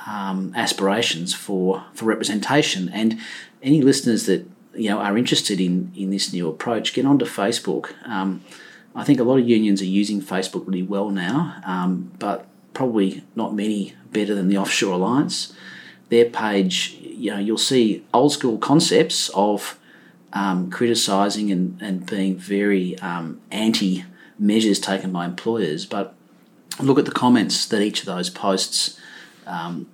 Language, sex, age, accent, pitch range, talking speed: English, male, 40-59, Australian, 95-110 Hz, 155 wpm